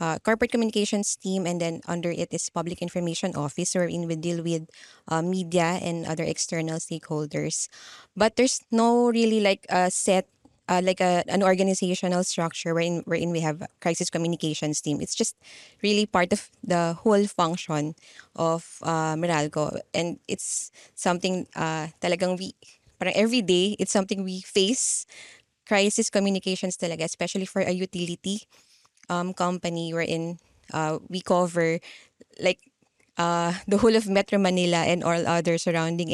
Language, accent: English, Filipino